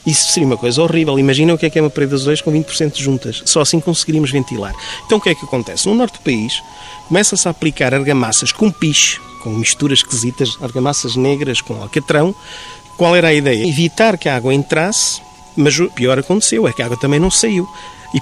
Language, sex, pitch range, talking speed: Portuguese, male, 130-170 Hz, 215 wpm